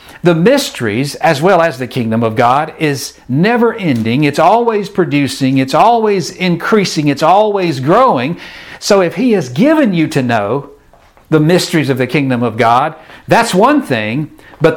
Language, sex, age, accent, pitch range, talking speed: English, male, 60-79, American, 145-210 Hz, 160 wpm